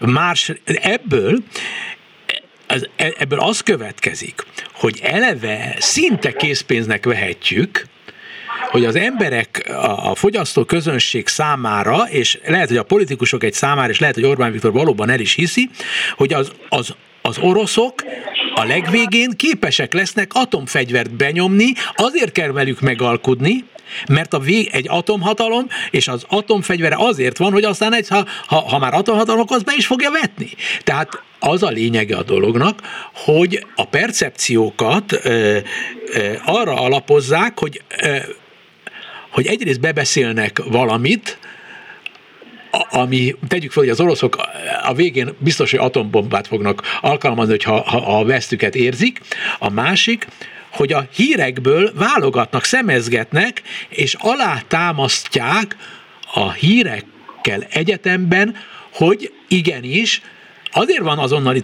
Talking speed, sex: 120 wpm, male